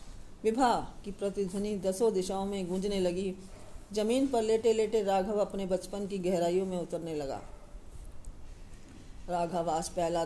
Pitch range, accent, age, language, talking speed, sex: 165-195 Hz, native, 40-59, Hindi, 135 wpm, female